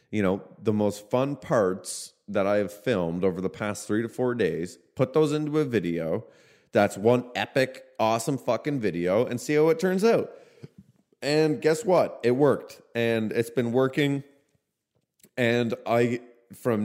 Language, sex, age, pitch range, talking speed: English, male, 30-49, 95-125 Hz, 165 wpm